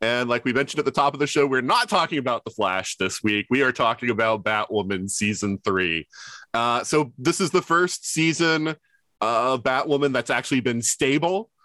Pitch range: 95-130 Hz